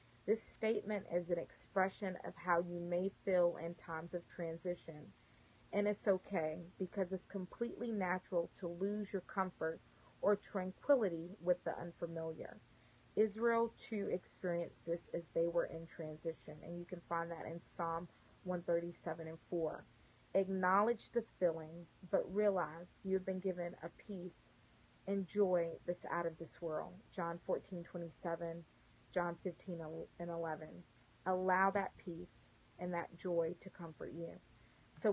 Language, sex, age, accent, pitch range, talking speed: English, female, 30-49, American, 165-190 Hz, 140 wpm